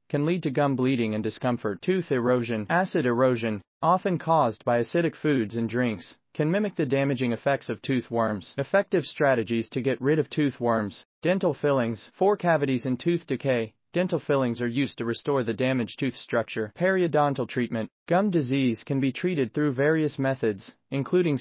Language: English